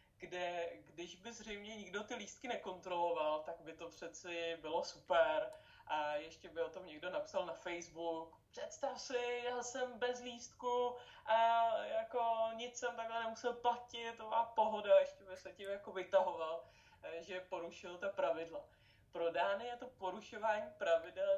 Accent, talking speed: native, 150 wpm